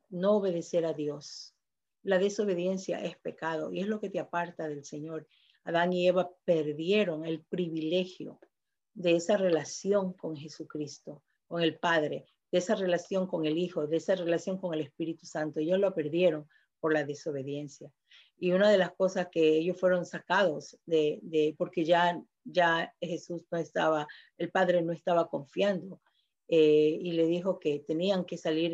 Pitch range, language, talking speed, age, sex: 160-185 Hz, Spanish, 165 wpm, 50-69, female